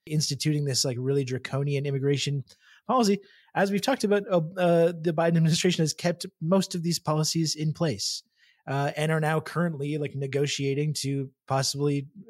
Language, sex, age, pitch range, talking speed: English, male, 30-49, 130-155 Hz, 160 wpm